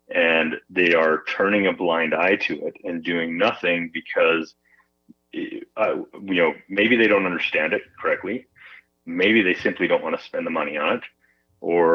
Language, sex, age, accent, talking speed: English, male, 30-49, American, 165 wpm